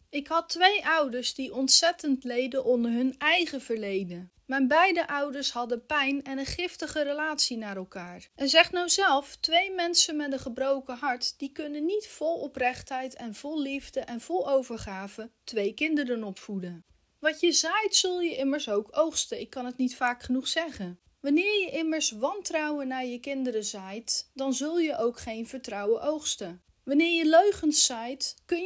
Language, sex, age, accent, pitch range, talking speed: Dutch, female, 30-49, Dutch, 225-305 Hz, 170 wpm